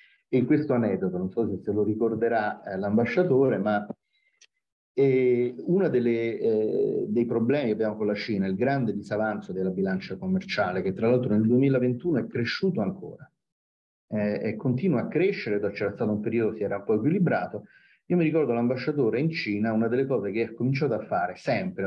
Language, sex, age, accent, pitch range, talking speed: Italian, male, 40-59, native, 105-145 Hz, 185 wpm